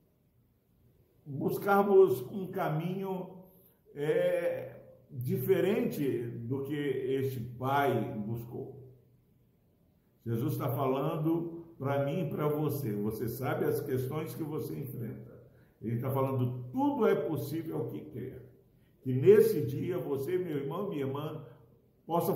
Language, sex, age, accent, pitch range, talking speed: Portuguese, male, 60-79, Brazilian, 120-160 Hz, 115 wpm